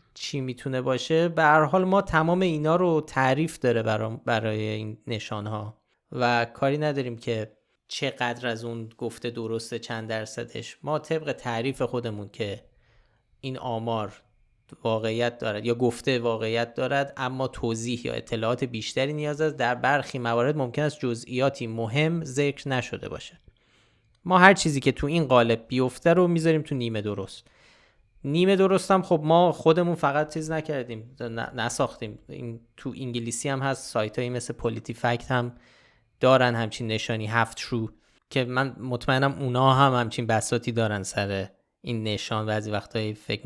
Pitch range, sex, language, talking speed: 115-140 Hz, male, Persian, 150 wpm